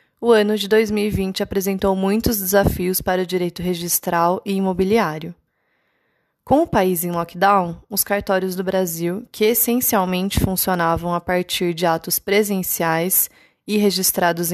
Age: 20-39